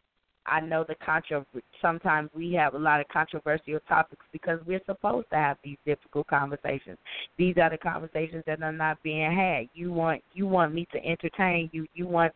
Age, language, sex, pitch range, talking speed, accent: 10-29, English, female, 155-180 Hz, 190 wpm, American